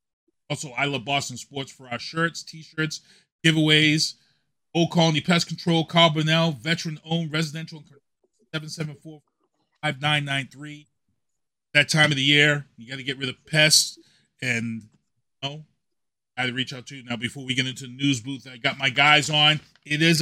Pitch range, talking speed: 125-160 Hz, 165 wpm